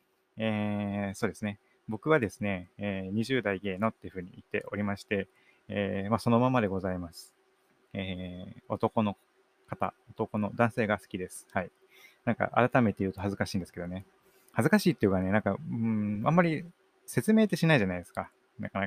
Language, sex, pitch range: Japanese, male, 95-125 Hz